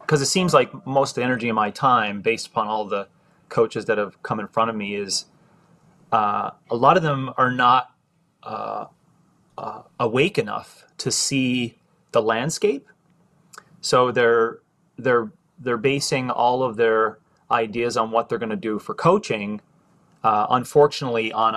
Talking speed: 165 wpm